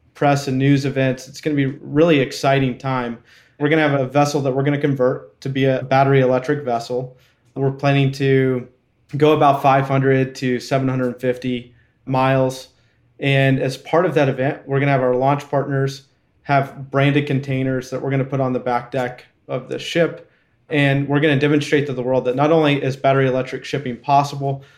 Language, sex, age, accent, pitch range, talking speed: English, male, 30-49, American, 130-145 Hz, 200 wpm